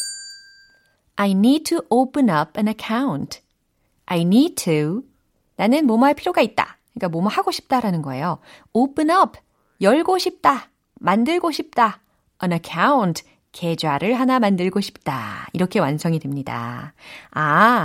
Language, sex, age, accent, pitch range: Korean, female, 30-49, native, 165-270 Hz